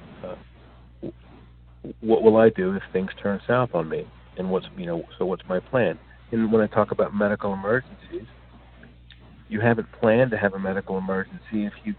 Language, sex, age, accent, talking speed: English, male, 50-69, American, 175 wpm